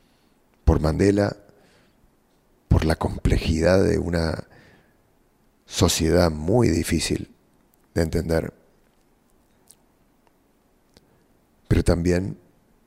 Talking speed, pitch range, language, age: 65 wpm, 85-95 Hz, English, 40-59